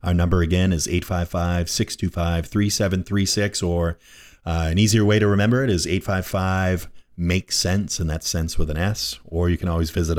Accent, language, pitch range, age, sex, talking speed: American, English, 80-100 Hz, 30-49, male, 155 wpm